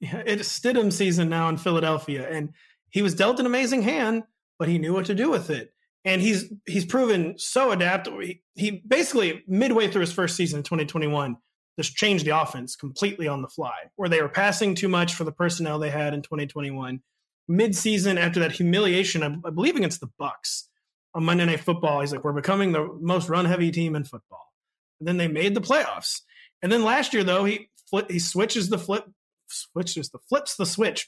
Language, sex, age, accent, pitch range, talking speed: English, male, 30-49, American, 165-210 Hz, 205 wpm